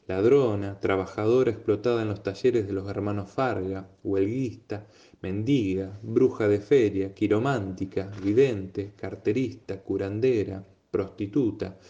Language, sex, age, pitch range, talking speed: Polish, male, 20-39, 100-125 Hz, 100 wpm